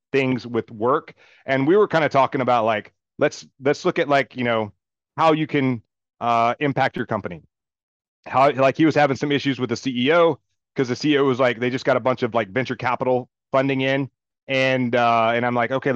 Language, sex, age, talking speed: English, male, 30-49, 215 wpm